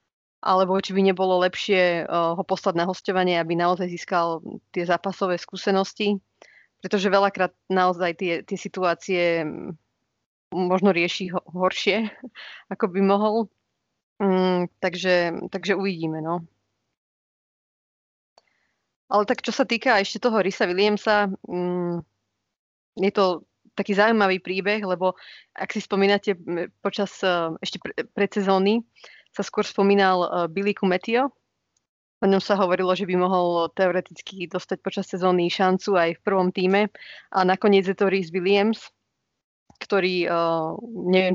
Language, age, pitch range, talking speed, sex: Slovak, 20-39, 180-205 Hz, 120 wpm, female